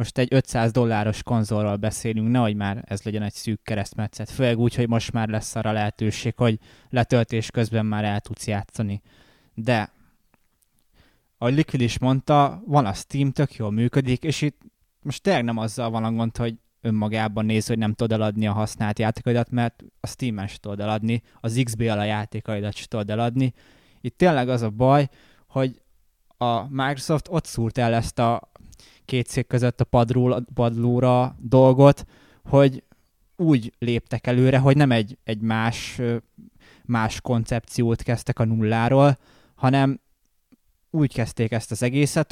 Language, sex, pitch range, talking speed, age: Hungarian, male, 110-130 Hz, 155 wpm, 20-39